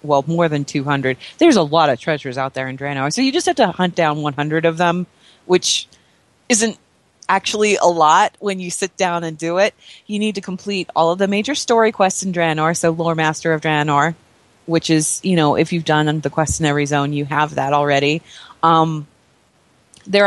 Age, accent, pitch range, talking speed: 30-49, American, 160-210 Hz, 205 wpm